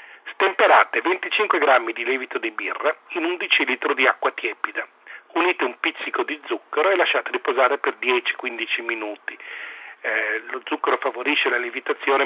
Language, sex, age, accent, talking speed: Italian, male, 40-59, native, 145 wpm